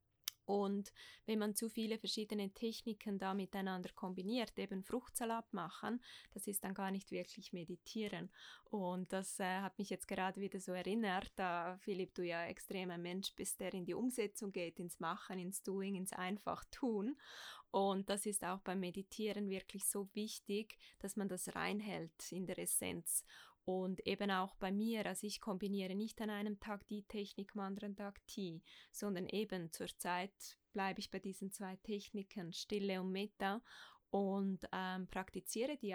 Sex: female